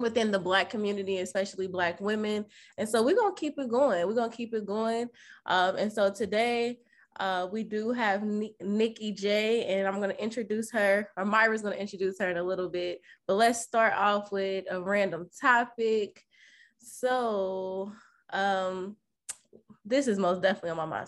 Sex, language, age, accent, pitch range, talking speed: female, English, 20-39, American, 190-235 Hz, 170 wpm